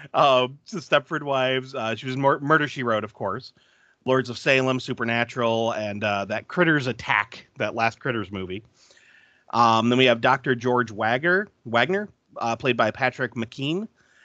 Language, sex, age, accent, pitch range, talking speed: English, male, 30-49, American, 115-145 Hz, 160 wpm